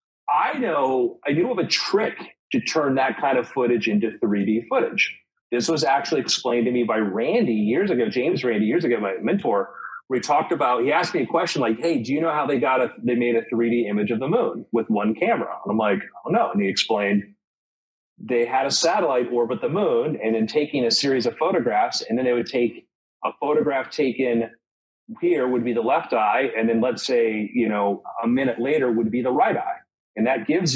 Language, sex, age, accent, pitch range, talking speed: English, male, 40-59, American, 110-130 Hz, 220 wpm